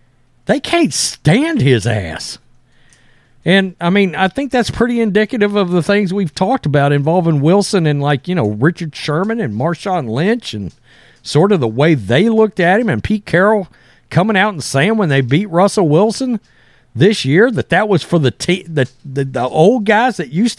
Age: 50-69